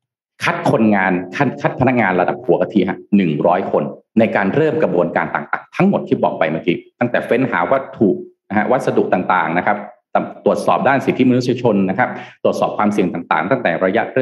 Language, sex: Thai, male